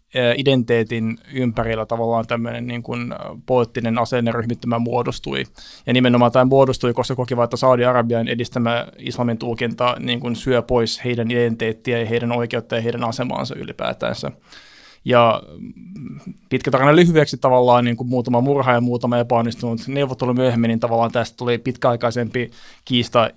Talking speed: 125 wpm